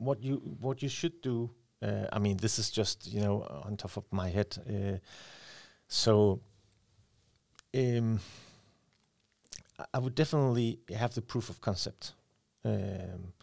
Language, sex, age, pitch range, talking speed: English, male, 40-59, 105-120 Hz, 145 wpm